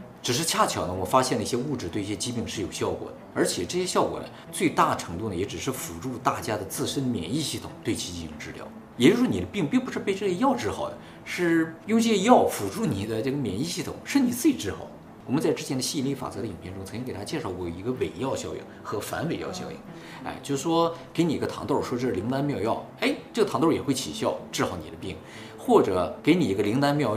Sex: male